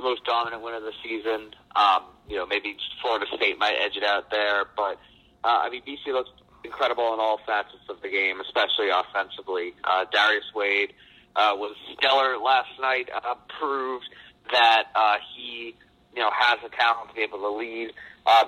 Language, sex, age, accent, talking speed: English, male, 30-49, American, 180 wpm